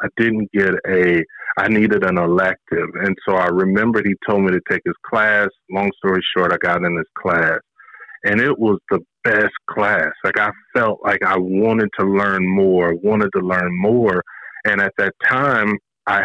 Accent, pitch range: American, 95-105 Hz